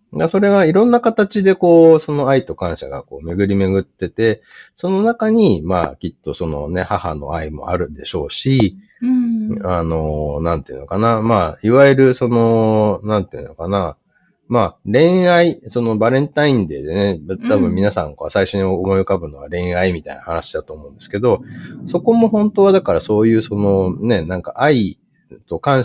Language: Japanese